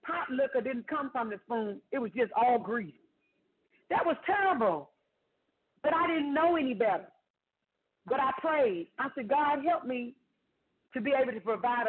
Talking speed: 170 wpm